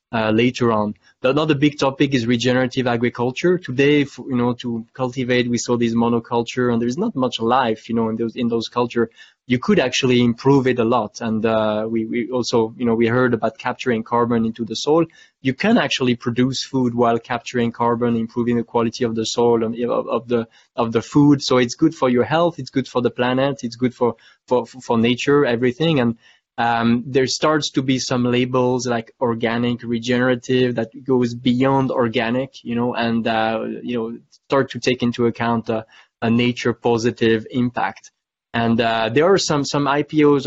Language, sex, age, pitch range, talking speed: English, male, 20-39, 115-130 Hz, 195 wpm